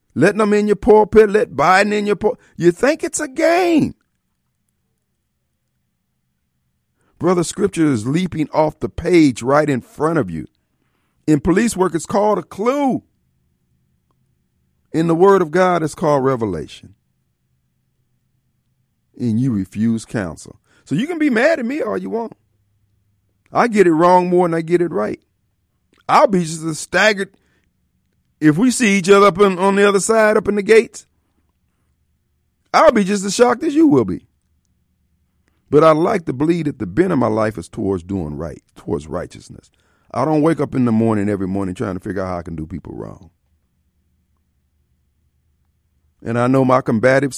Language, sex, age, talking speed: English, male, 50-69, 170 wpm